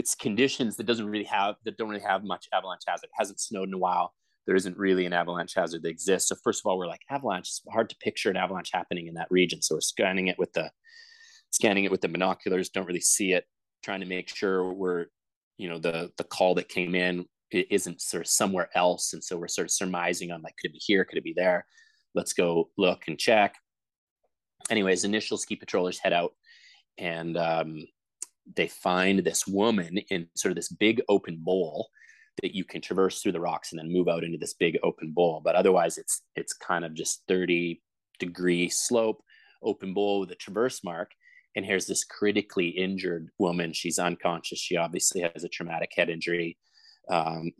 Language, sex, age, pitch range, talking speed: English, male, 30-49, 85-100 Hz, 205 wpm